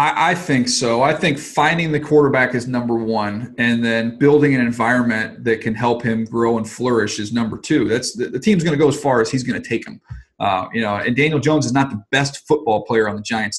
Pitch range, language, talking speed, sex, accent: 115-145 Hz, English, 245 wpm, male, American